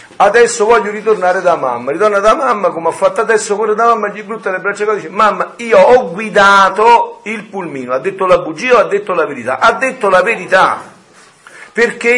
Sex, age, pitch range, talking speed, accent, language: male, 50-69, 190-250 Hz, 190 wpm, native, Italian